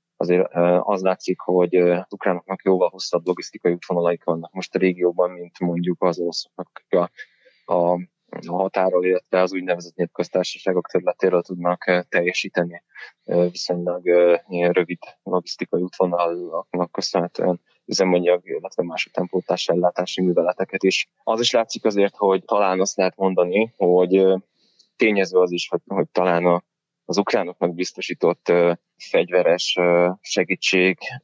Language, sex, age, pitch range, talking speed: Hungarian, male, 20-39, 85-95 Hz, 125 wpm